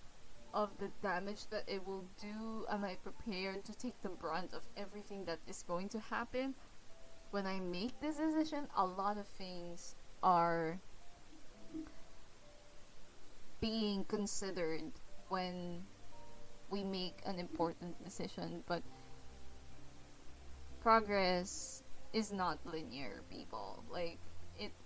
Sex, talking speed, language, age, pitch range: female, 115 wpm, English, 20-39, 170-220 Hz